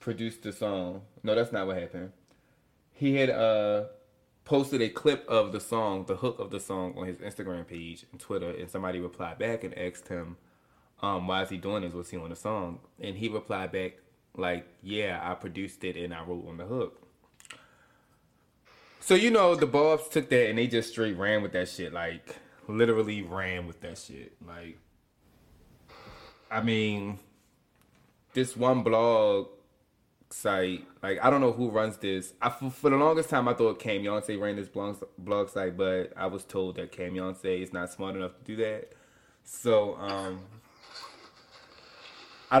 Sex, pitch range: male, 90-120 Hz